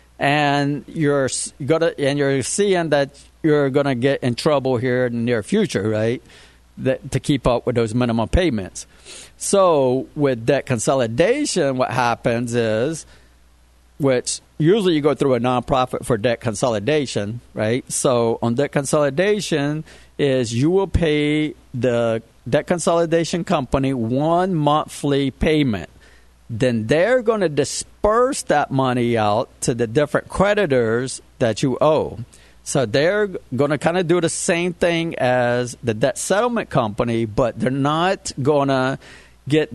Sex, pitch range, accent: male, 120-155 Hz, American